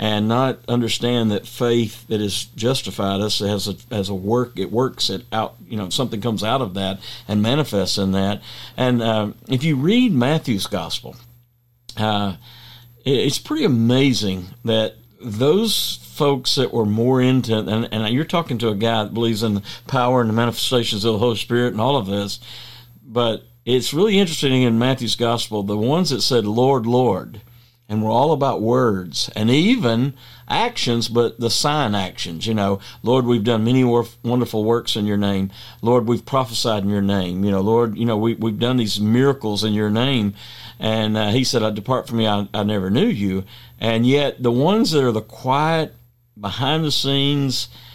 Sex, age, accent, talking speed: male, 50-69, American, 180 wpm